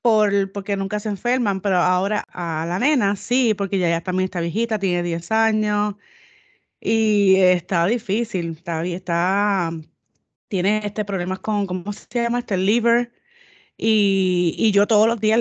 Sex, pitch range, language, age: female, 185-225 Hz, Spanish, 30-49